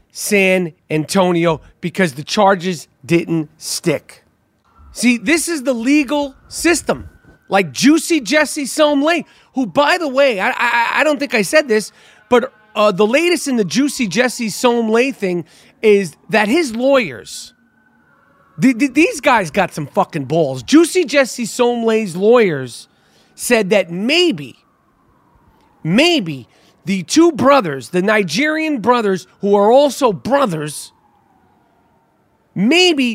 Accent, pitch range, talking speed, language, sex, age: American, 195-280 Hz, 125 wpm, English, male, 40-59